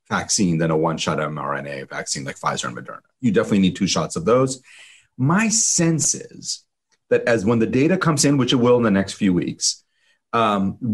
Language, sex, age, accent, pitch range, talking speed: English, male, 30-49, American, 100-155 Hz, 195 wpm